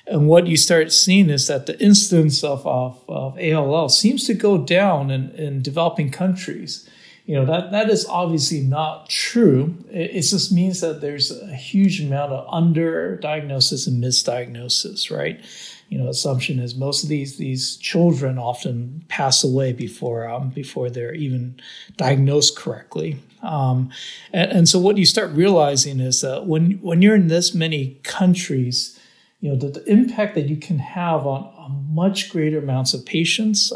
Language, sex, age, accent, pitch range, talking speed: English, male, 50-69, American, 135-175 Hz, 170 wpm